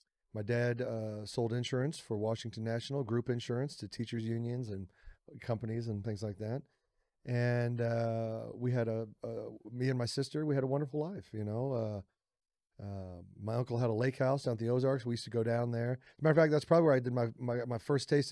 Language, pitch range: English, 110-130 Hz